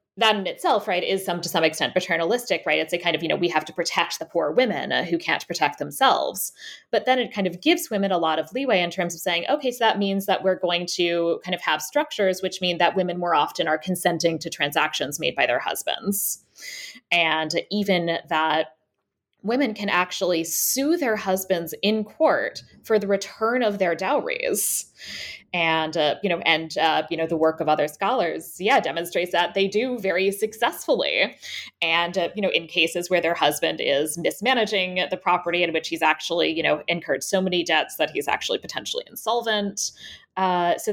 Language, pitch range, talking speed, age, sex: English, 165-200 Hz, 200 wpm, 20-39, female